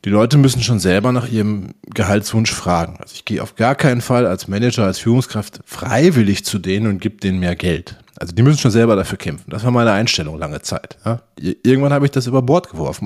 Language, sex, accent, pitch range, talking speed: German, male, German, 105-140 Hz, 220 wpm